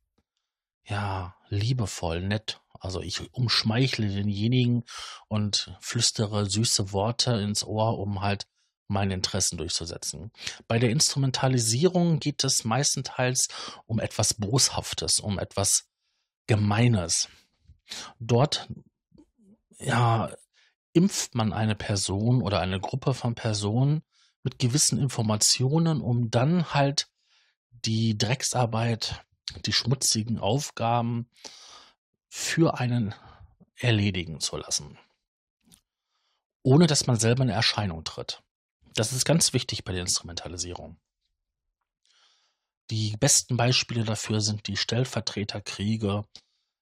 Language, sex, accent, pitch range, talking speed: German, male, German, 100-125 Hz, 100 wpm